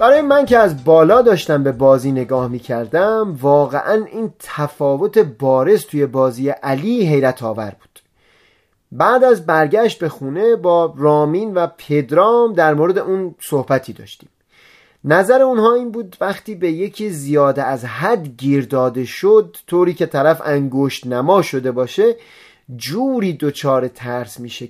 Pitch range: 135-215 Hz